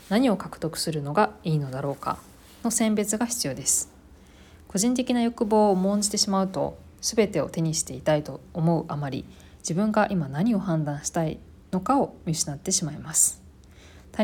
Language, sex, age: Japanese, female, 20-39